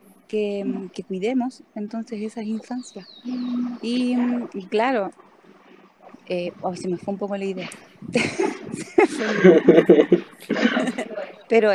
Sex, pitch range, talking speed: female, 190-225 Hz, 100 wpm